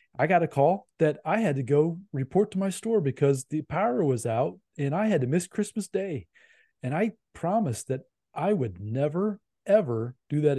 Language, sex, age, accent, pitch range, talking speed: English, male, 30-49, American, 135-180 Hz, 200 wpm